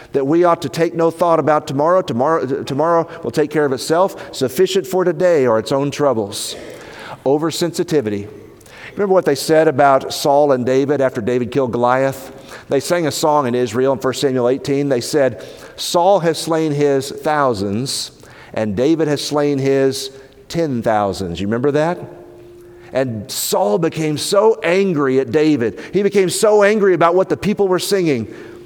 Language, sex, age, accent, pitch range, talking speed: English, male, 50-69, American, 125-160 Hz, 170 wpm